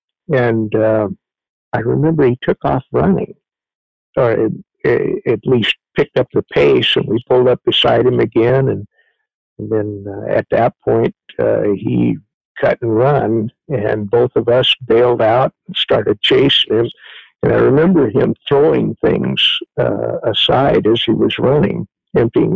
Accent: American